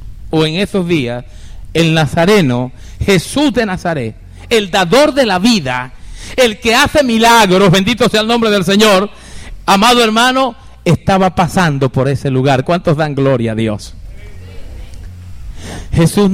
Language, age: Spanish, 50-69